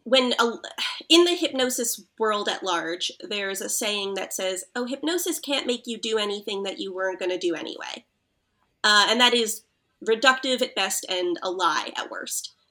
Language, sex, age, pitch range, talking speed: English, female, 20-39, 195-245 Hz, 185 wpm